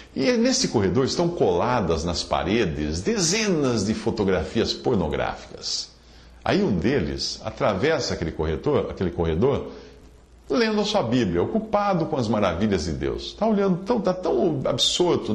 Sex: male